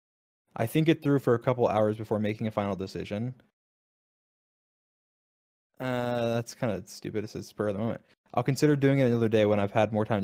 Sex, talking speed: male, 205 wpm